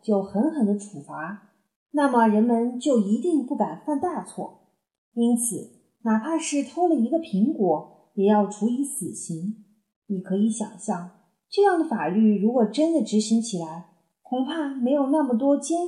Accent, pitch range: native, 200-265 Hz